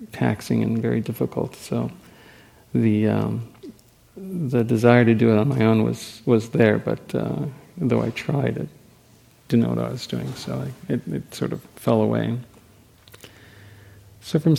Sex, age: male, 50-69